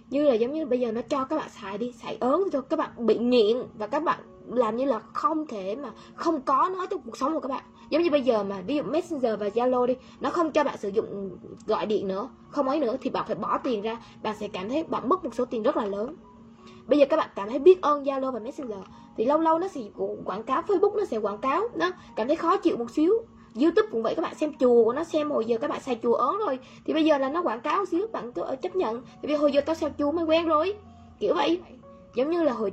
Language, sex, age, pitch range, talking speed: Vietnamese, female, 10-29, 230-310 Hz, 280 wpm